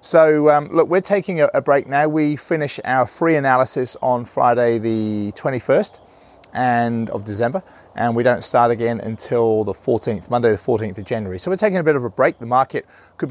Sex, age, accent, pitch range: male, 30-49, British, 115-150 Hz